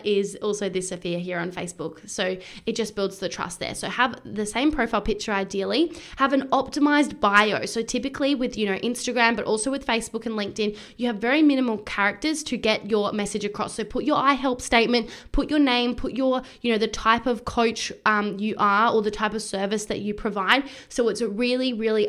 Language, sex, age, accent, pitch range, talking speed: English, female, 10-29, Australian, 210-245 Hz, 215 wpm